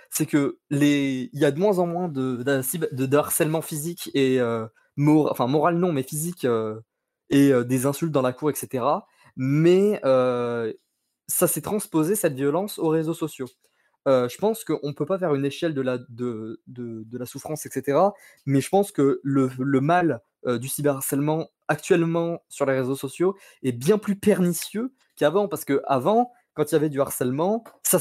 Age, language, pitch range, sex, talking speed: 20-39, French, 135-175 Hz, male, 190 wpm